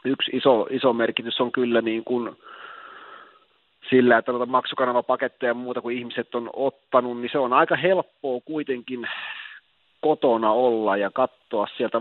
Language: Finnish